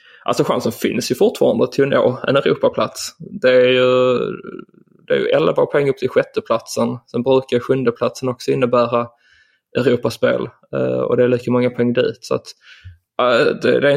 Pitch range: 125-140 Hz